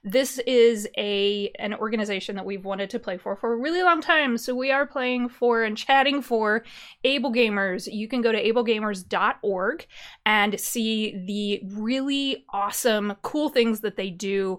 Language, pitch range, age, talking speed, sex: English, 200-270 Hz, 20-39, 160 wpm, female